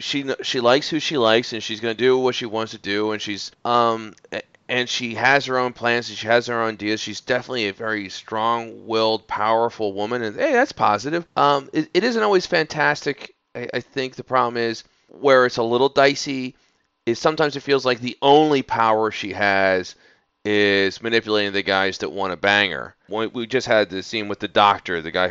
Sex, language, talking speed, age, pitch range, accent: male, English, 210 wpm, 30-49, 100-125 Hz, American